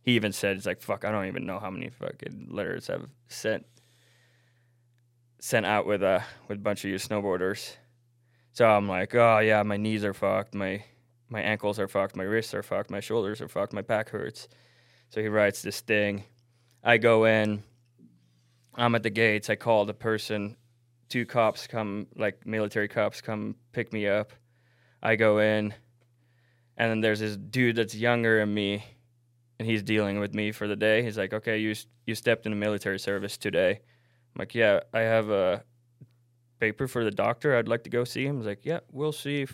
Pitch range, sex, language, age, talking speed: 105-120 Hz, male, English, 20-39, 195 wpm